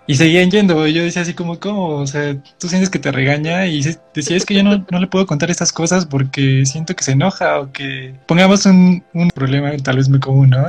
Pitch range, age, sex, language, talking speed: 135-175 Hz, 20-39, male, Arabic, 245 wpm